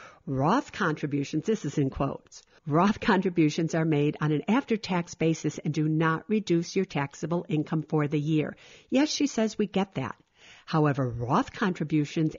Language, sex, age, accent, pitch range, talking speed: English, female, 50-69, American, 155-210 Hz, 160 wpm